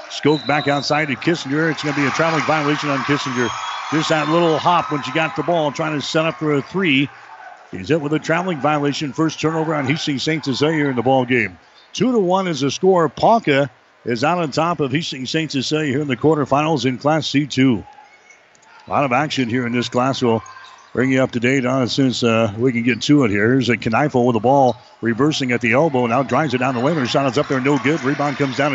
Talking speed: 250 wpm